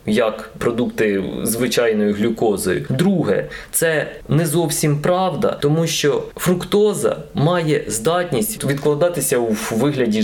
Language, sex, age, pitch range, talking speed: Ukrainian, male, 20-39, 125-180 Hz, 100 wpm